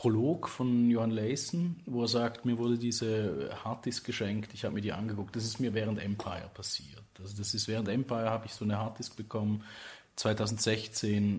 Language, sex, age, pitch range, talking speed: German, male, 30-49, 105-125 Hz, 185 wpm